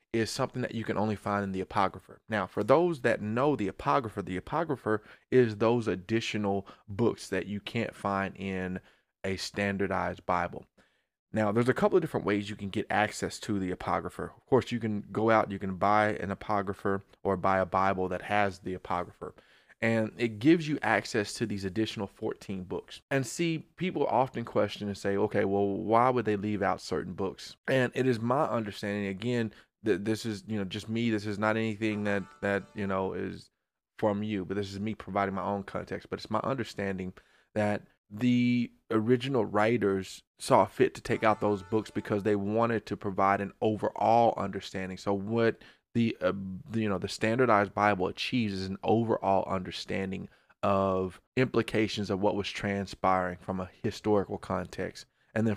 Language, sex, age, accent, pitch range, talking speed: English, male, 20-39, American, 95-115 Hz, 185 wpm